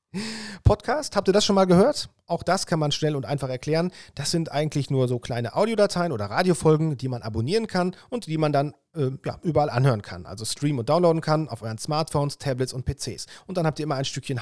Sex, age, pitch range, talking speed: male, 40-59, 125-160 Hz, 230 wpm